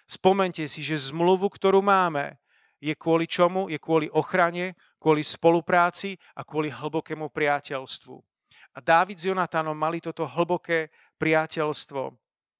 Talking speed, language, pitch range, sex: 125 wpm, Slovak, 150-180 Hz, male